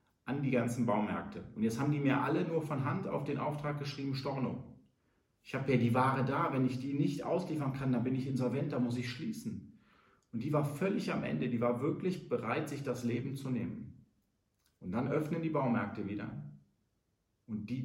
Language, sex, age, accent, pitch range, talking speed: German, male, 40-59, German, 115-145 Hz, 205 wpm